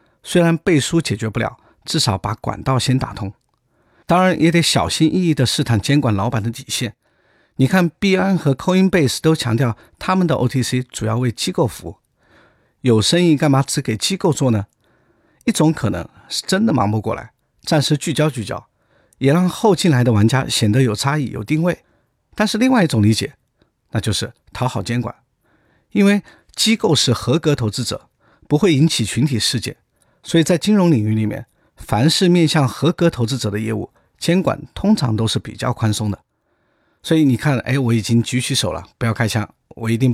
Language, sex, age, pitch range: Chinese, male, 50-69, 115-165 Hz